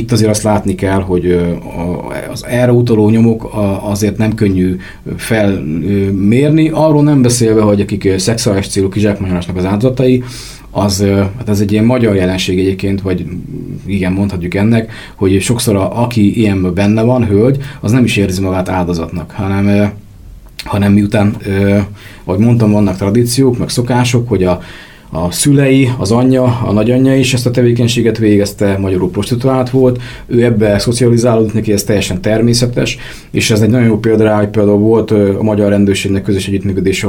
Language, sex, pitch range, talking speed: Hungarian, male, 95-115 Hz, 155 wpm